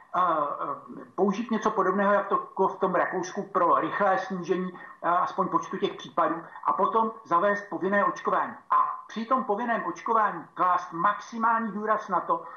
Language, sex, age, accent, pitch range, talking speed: Czech, male, 60-79, native, 180-215 Hz, 145 wpm